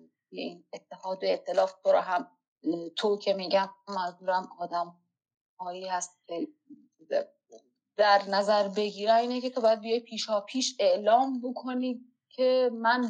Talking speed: 130 wpm